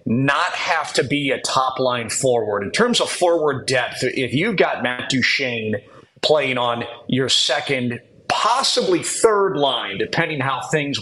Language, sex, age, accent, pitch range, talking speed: English, male, 40-59, American, 125-165 Hz, 155 wpm